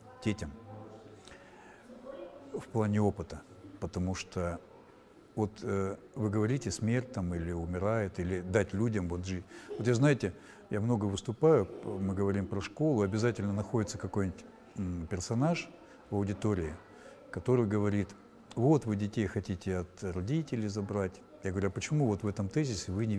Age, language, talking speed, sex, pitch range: 60-79, Russian, 140 wpm, male, 100-125 Hz